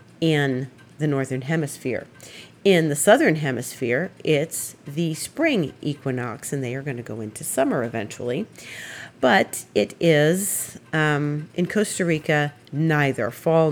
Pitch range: 140-180 Hz